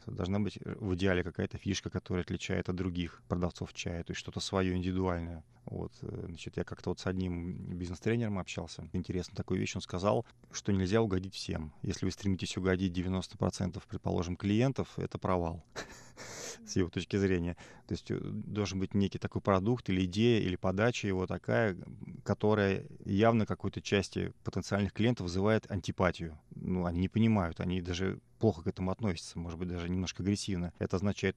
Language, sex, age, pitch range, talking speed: Russian, male, 30-49, 90-110 Hz, 160 wpm